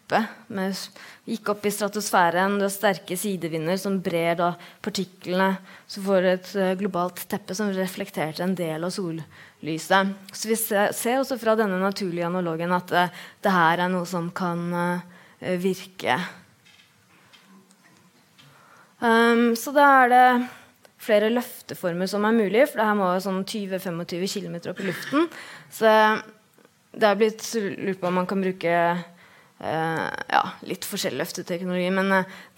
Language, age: English, 20-39